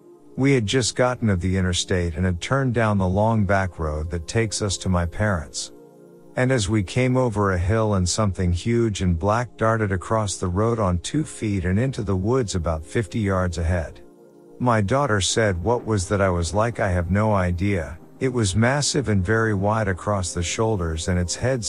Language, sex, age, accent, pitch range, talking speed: English, male, 50-69, American, 90-115 Hz, 200 wpm